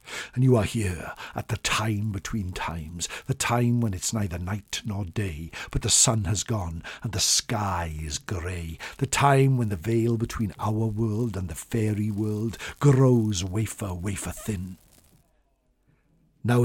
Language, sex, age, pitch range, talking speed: English, male, 60-79, 90-115 Hz, 160 wpm